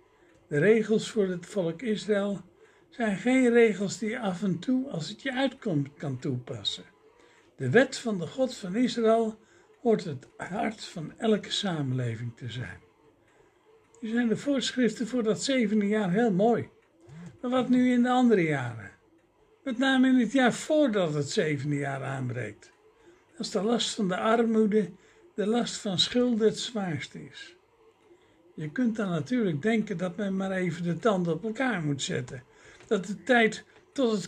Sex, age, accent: male, 60-79, Dutch